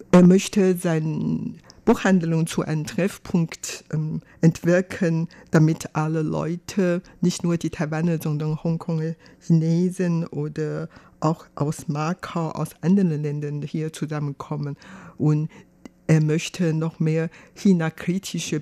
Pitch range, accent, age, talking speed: 155-180 Hz, German, 60-79, 110 wpm